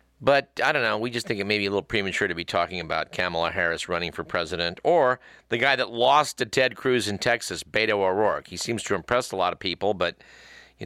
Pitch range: 85-115 Hz